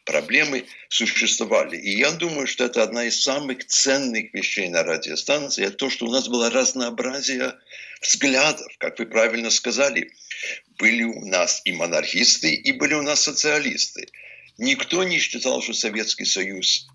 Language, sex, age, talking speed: Russian, male, 60-79, 150 wpm